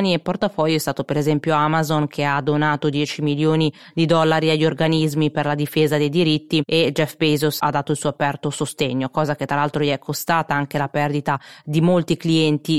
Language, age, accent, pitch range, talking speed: Italian, 20-39, native, 145-160 Hz, 205 wpm